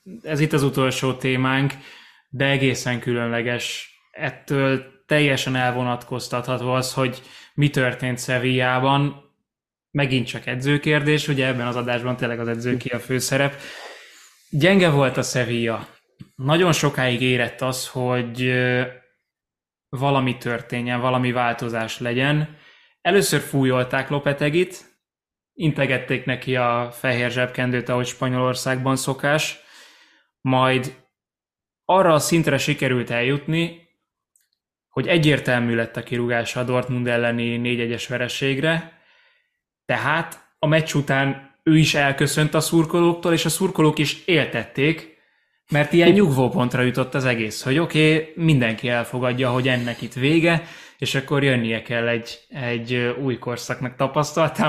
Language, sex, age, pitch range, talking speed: Hungarian, male, 20-39, 125-150 Hz, 115 wpm